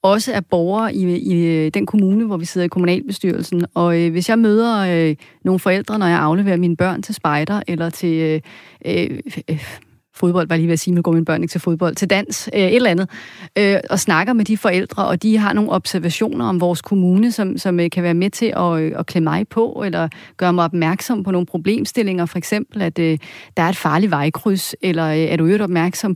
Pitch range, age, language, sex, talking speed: 165-205 Hz, 30-49, Danish, female, 220 wpm